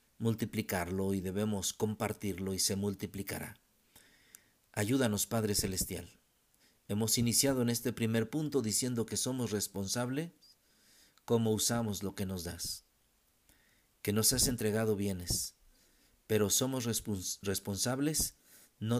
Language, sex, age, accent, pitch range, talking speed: Spanish, male, 50-69, Mexican, 95-110 Hz, 110 wpm